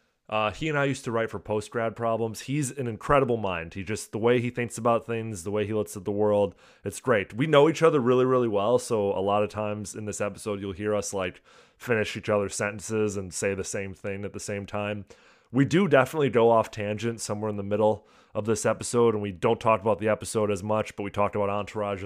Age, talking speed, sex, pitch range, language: 20-39, 245 wpm, male, 100-120 Hz, English